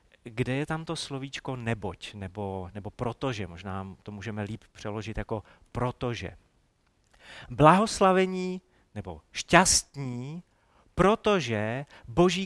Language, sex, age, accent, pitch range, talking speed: Czech, male, 40-59, native, 105-150 Hz, 100 wpm